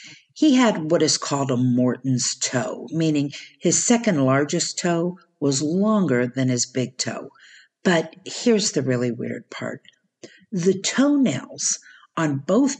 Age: 50-69